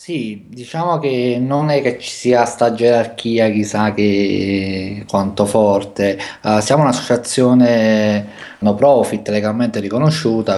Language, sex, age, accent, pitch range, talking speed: Italian, male, 20-39, native, 100-120 Hz, 120 wpm